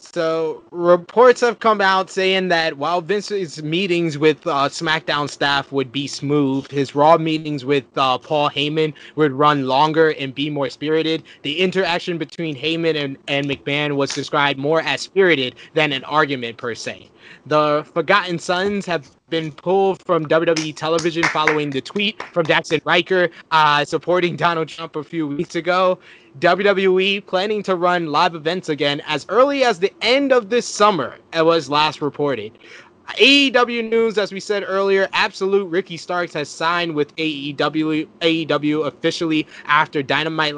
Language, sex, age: English, male, 20-39